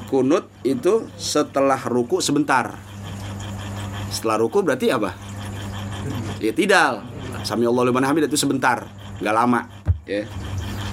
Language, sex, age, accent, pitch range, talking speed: Indonesian, male, 30-49, native, 115-170 Hz, 100 wpm